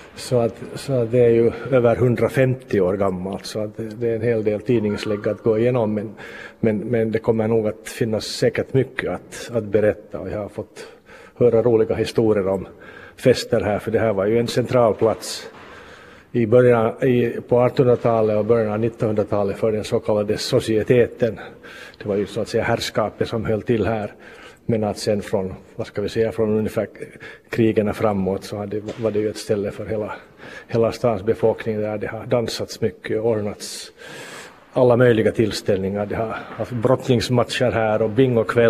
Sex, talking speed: male, 180 wpm